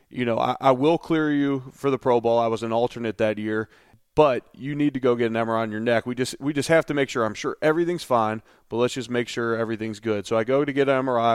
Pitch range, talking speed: 115-130 Hz, 285 wpm